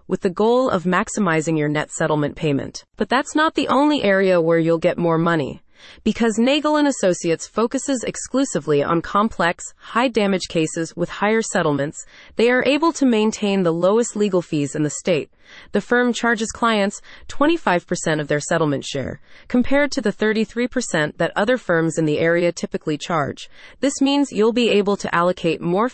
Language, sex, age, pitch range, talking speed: English, female, 30-49, 170-235 Hz, 170 wpm